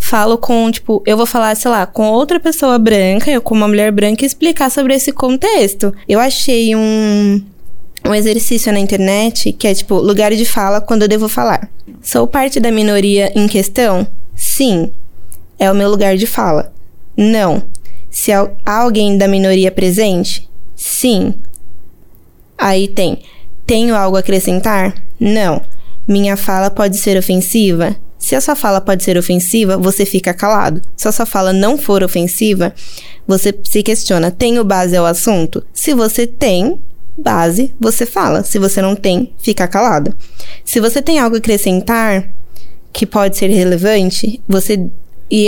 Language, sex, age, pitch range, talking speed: Portuguese, female, 10-29, 190-225 Hz, 160 wpm